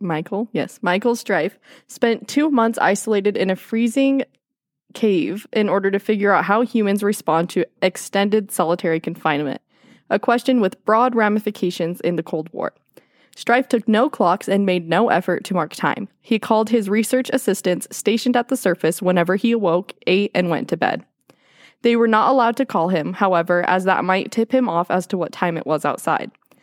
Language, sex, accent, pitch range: English, female, American, 180-235 Hz